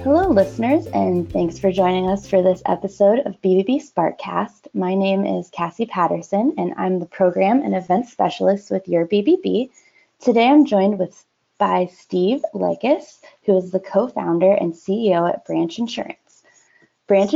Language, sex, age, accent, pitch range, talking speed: English, female, 20-39, American, 180-235 Hz, 155 wpm